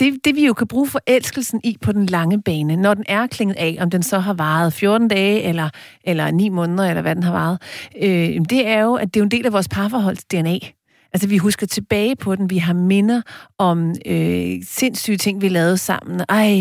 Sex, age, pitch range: female, 40-59, 190-250 Hz